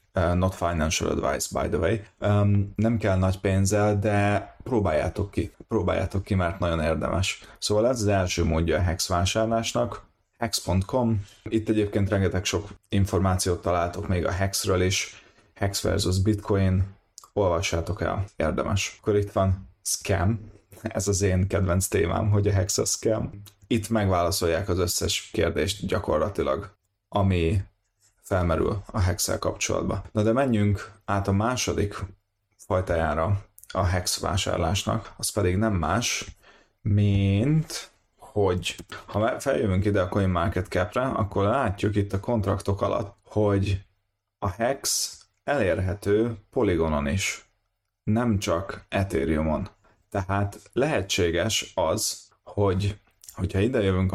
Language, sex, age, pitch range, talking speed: Hungarian, male, 30-49, 95-105 Hz, 125 wpm